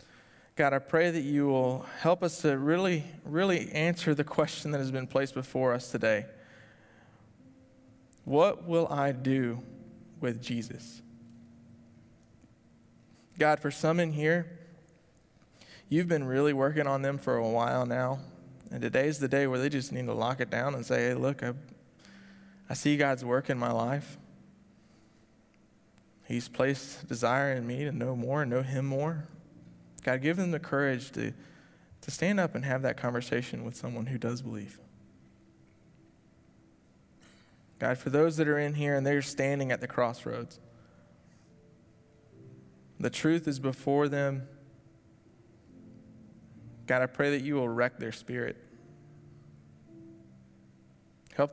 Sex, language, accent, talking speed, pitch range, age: male, English, American, 145 wpm, 115-145 Hz, 20-39